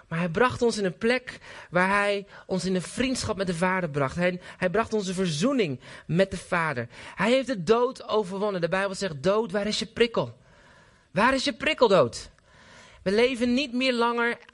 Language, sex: Dutch, male